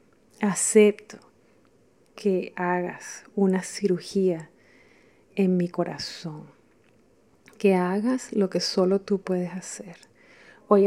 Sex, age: female, 30-49